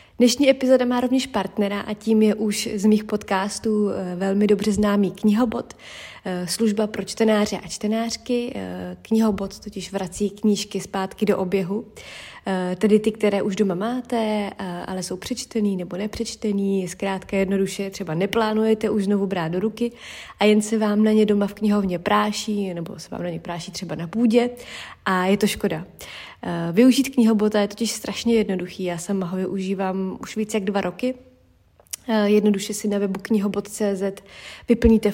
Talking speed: 160 wpm